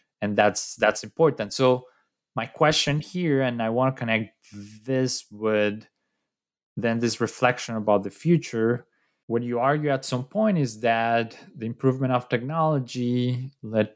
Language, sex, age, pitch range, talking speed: English, male, 20-39, 105-130 Hz, 145 wpm